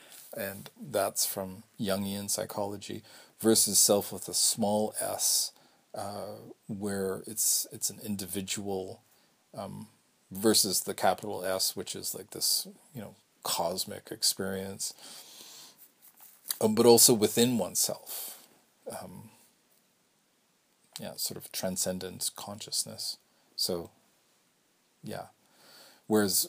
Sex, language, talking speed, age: male, English, 100 wpm, 40-59